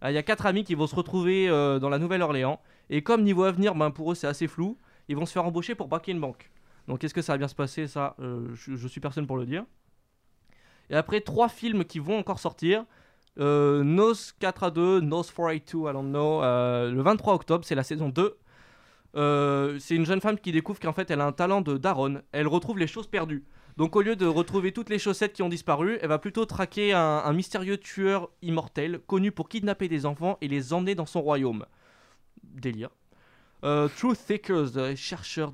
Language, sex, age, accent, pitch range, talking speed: French, male, 20-39, French, 145-190 Hz, 225 wpm